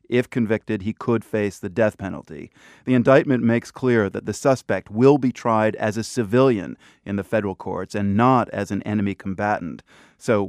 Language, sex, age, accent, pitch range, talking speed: English, male, 30-49, American, 105-125 Hz, 185 wpm